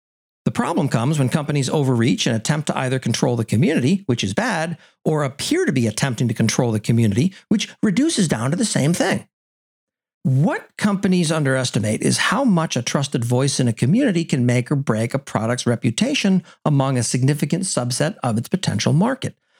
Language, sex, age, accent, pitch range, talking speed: English, male, 50-69, American, 125-175 Hz, 180 wpm